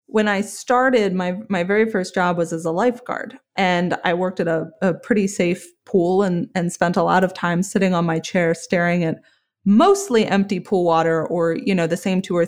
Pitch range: 175-215 Hz